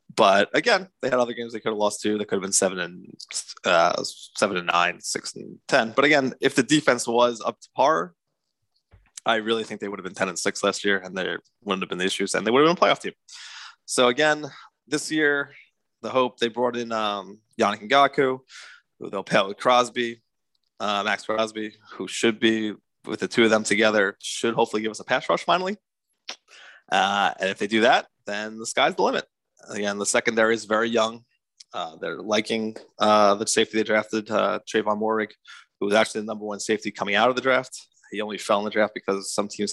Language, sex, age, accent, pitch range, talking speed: English, male, 20-39, American, 105-120 Hz, 225 wpm